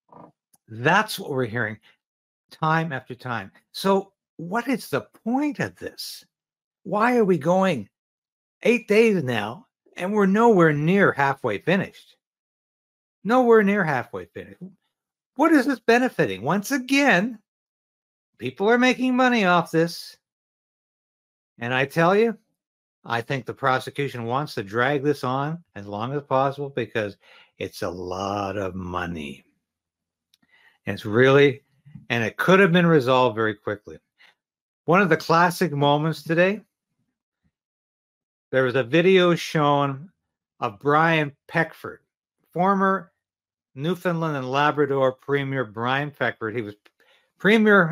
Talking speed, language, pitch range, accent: 125 wpm, English, 125-190 Hz, American